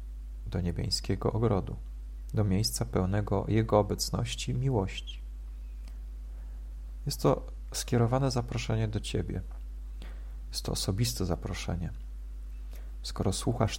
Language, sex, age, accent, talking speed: Polish, male, 40-59, native, 95 wpm